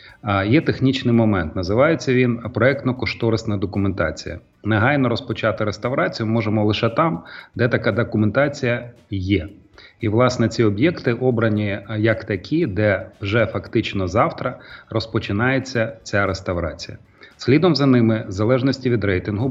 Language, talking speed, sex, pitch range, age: Ukrainian, 115 wpm, male, 100-125 Hz, 30-49